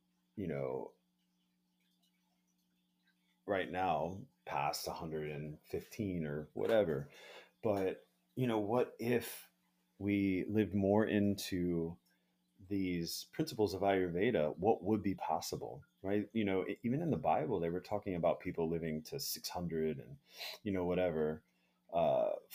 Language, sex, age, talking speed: English, male, 30-49, 120 wpm